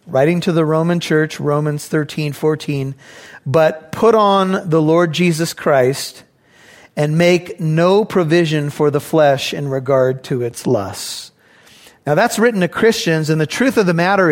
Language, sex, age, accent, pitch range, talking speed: English, male, 40-59, American, 155-200 Hz, 160 wpm